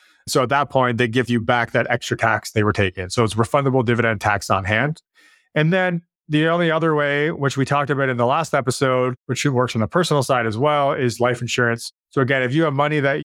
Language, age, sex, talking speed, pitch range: English, 30-49, male, 240 wpm, 120-145 Hz